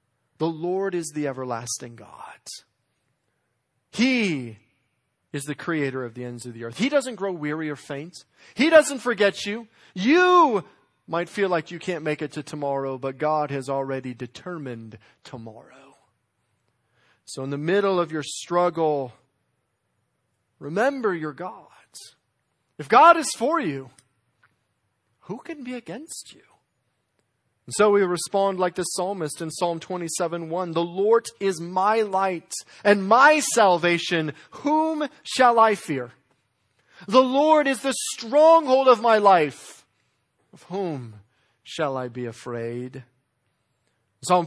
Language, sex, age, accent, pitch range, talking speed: English, male, 40-59, American, 130-200 Hz, 135 wpm